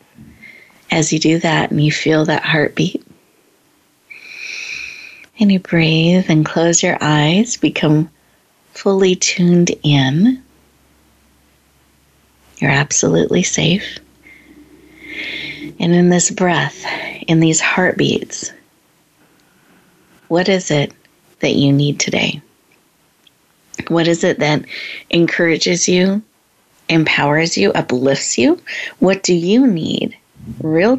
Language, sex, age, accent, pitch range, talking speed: English, female, 40-59, American, 150-200 Hz, 100 wpm